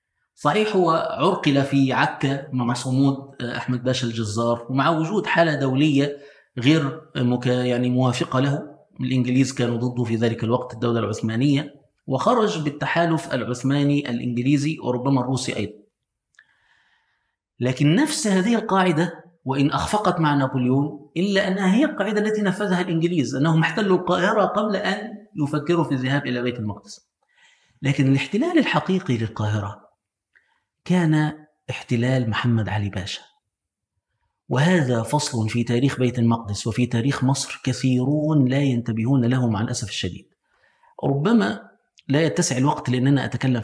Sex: male